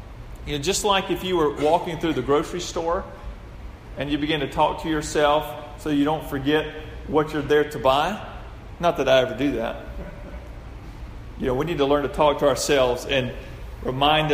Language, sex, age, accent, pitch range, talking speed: English, male, 40-59, American, 135-180 Hz, 195 wpm